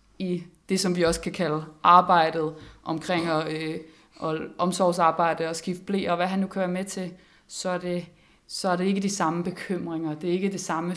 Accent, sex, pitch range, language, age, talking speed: native, female, 170-190 Hz, Danish, 20-39, 215 wpm